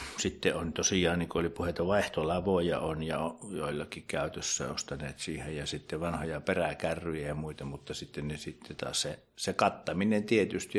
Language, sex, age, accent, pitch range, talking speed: Finnish, male, 60-79, native, 85-100 Hz, 160 wpm